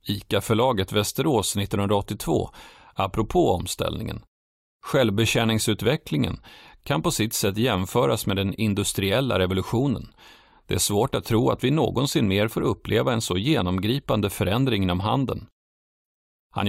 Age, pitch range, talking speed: 40-59, 95-115 Hz, 120 wpm